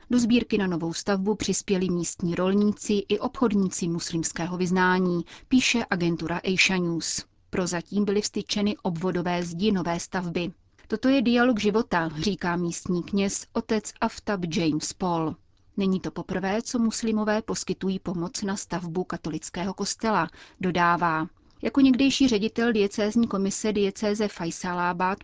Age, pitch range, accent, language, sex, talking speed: 30-49, 175-210 Hz, native, Czech, female, 130 wpm